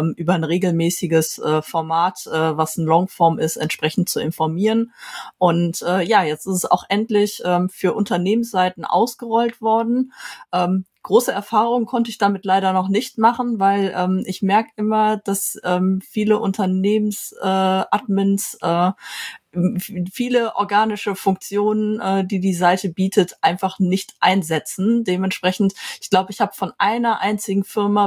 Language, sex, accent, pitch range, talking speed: German, female, German, 175-205 Hz, 140 wpm